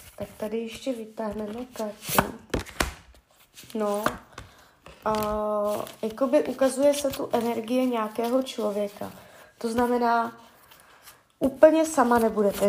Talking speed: 85 wpm